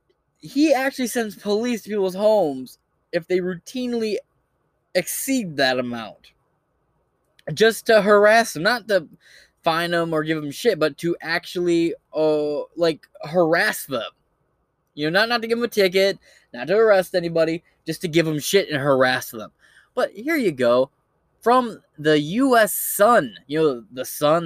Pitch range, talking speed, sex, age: 150-215 Hz, 160 wpm, male, 10-29